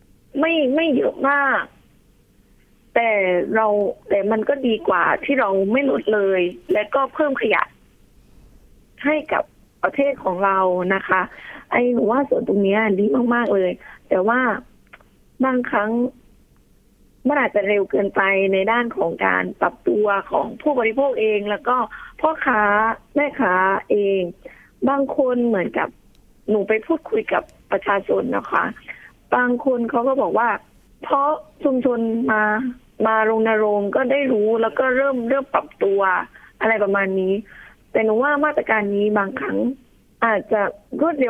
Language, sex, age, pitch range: Thai, female, 20-39, 200-270 Hz